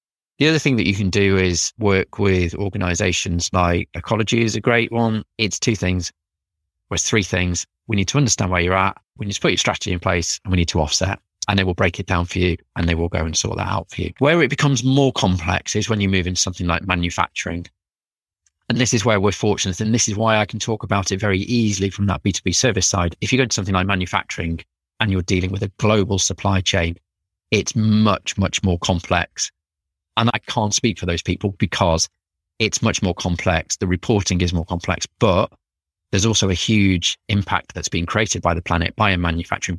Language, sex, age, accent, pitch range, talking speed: English, male, 30-49, British, 90-105 Hz, 225 wpm